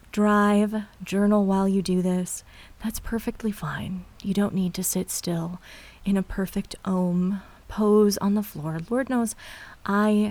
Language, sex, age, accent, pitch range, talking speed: English, female, 30-49, American, 180-220 Hz, 150 wpm